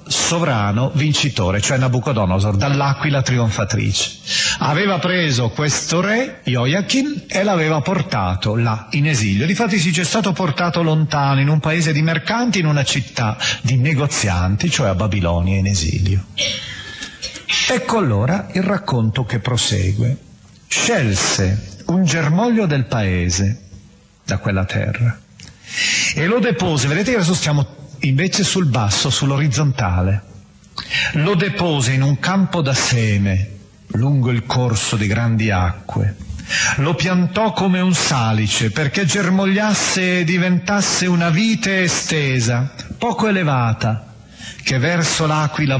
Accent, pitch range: native, 110-170 Hz